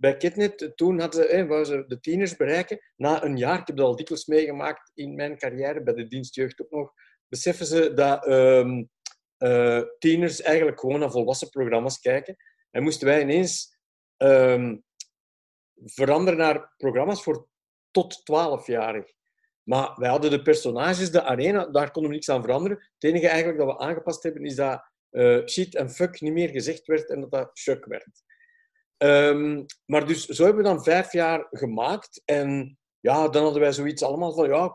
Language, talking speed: Dutch, 180 wpm